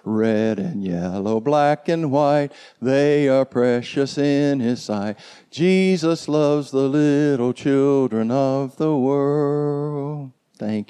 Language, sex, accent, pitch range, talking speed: English, male, American, 120-150 Hz, 115 wpm